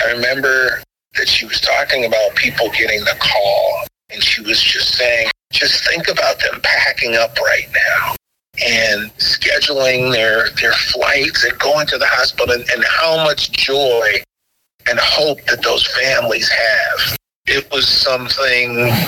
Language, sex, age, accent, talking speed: English, male, 40-59, American, 150 wpm